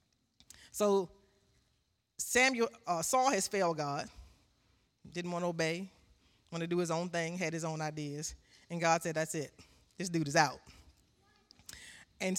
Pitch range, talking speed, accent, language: 155-205 Hz, 150 wpm, American, English